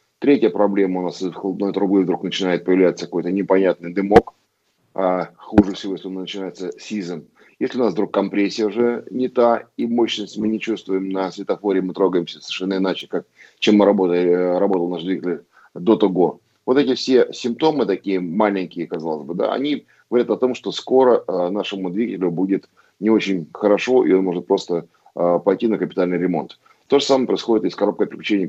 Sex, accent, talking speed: male, native, 180 wpm